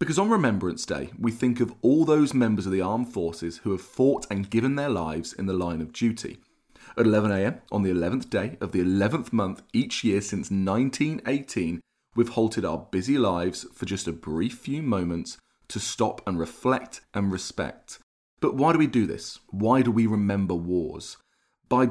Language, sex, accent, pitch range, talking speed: English, male, British, 95-125 Hz, 190 wpm